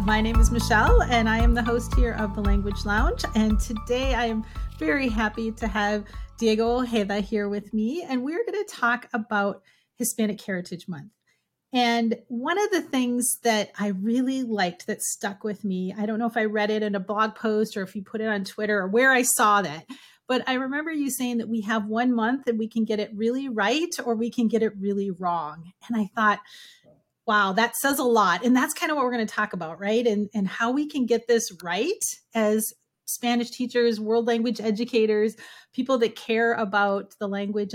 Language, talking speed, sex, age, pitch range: English, 215 wpm, female, 30-49, 210-250 Hz